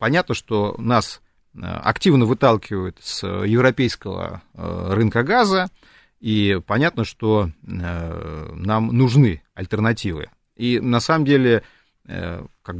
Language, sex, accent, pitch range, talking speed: Russian, male, native, 105-150 Hz, 95 wpm